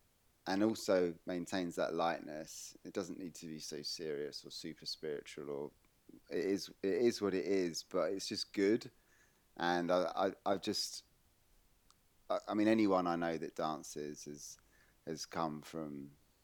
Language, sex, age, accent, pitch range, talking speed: English, male, 30-49, British, 75-95 Hz, 160 wpm